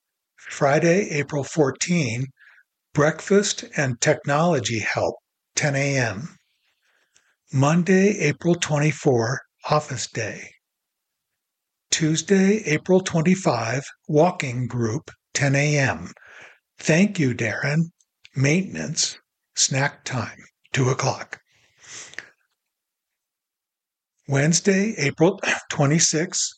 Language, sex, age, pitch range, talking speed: English, male, 60-79, 135-170 Hz, 70 wpm